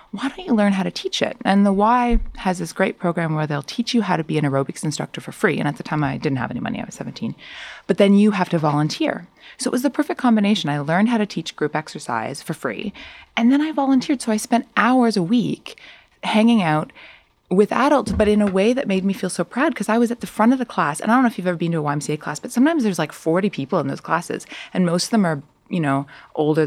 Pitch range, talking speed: 165-235 Hz, 275 wpm